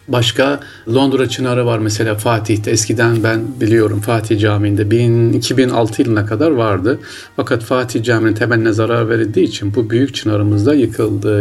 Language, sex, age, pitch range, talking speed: Turkish, male, 40-59, 105-125 Hz, 140 wpm